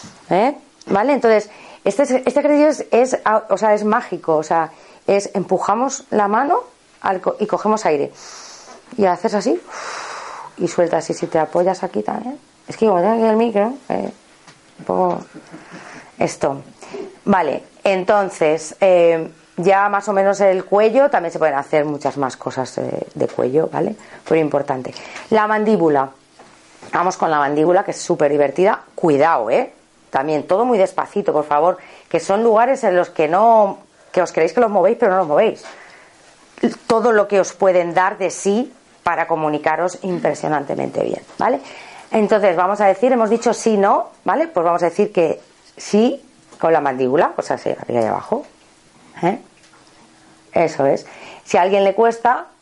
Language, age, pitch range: Spanish, 30-49, 170-220 Hz